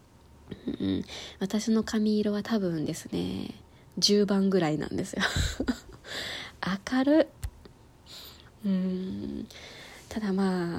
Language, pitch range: Japanese, 180-235 Hz